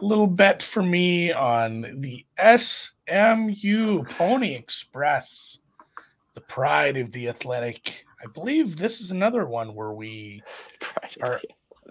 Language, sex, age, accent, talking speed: English, male, 30-49, American, 115 wpm